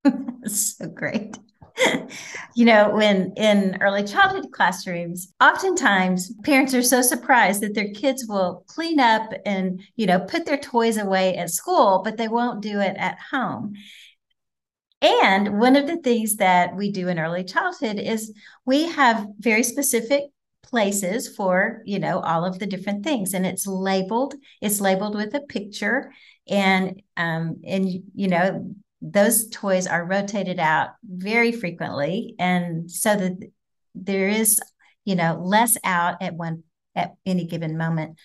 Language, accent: English, American